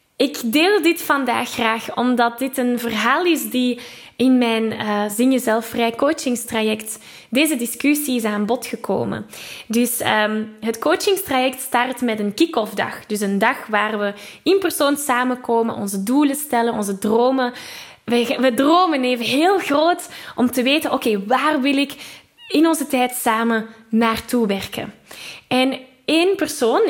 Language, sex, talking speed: Dutch, female, 155 wpm